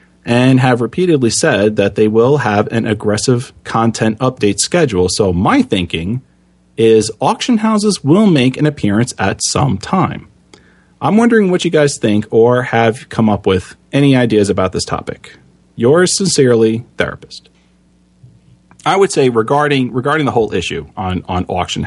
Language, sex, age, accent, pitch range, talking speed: English, male, 30-49, American, 95-130 Hz, 155 wpm